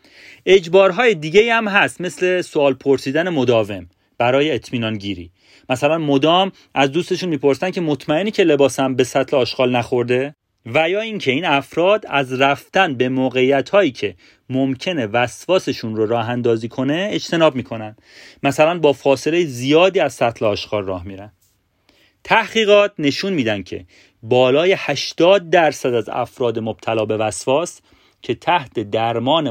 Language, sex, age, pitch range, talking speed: Persian, male, 30-49, 110-170 Hz, 130 wpm